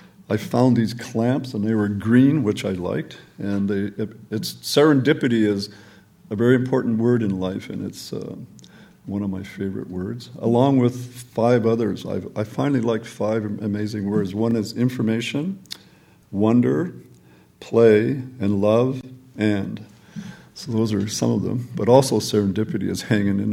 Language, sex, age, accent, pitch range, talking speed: English, male, 50-69, American, 100-120 Hz, 160 wpm